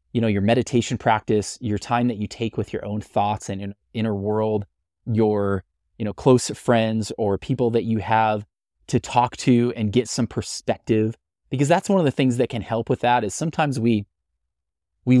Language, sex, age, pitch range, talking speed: English, male, 20-39, 100-120 Hz, 195 wpm